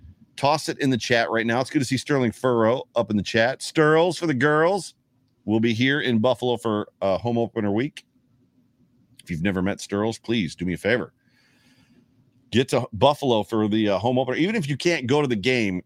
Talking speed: 215 wpm